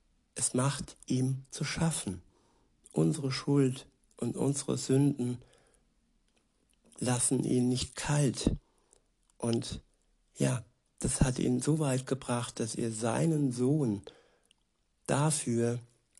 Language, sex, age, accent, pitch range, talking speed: German, male, 60-79, German, 115-140 Hz, 100 wpm